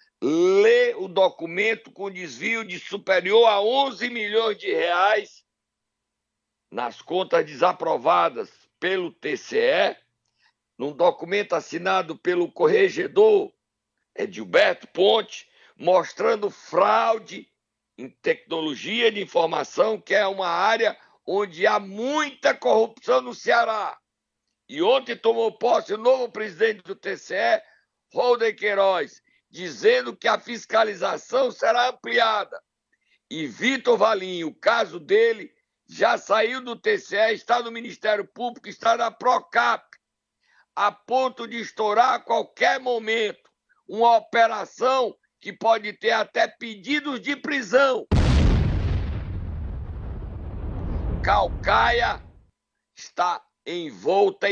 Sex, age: male, 60-79